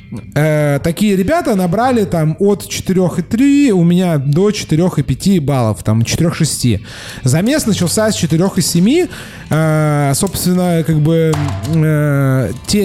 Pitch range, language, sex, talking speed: 135-180 Hz, Russian, male, 95 wpm